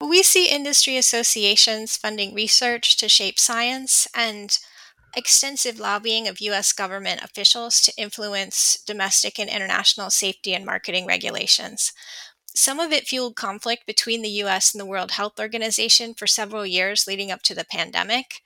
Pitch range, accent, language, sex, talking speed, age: 205-245 Hz, American, English, female, 150 wpm, 10-29